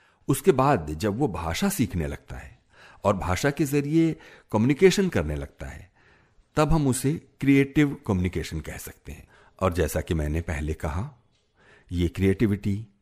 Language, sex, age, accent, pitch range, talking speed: Hindi, male, 60-79, native, 85-125 Hz, 145 wpm